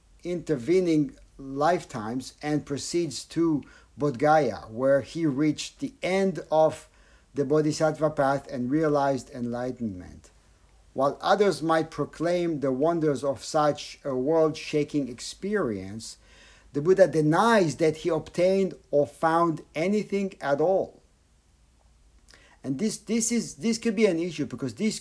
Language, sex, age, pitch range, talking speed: English, male, 50-69, 120-175 Hz, 120 wpm